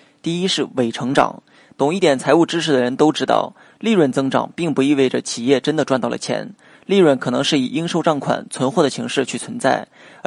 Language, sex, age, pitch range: Chinese, male, 20-39, 130-155 Hz